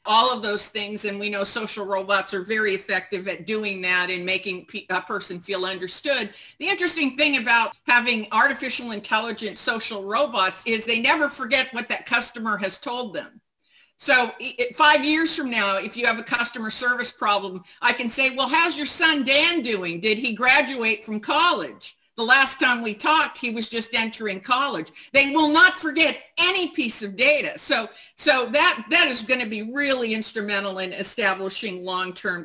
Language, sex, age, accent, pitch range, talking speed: English, female, 50-69, American, 205-270 Hz, 180 wpm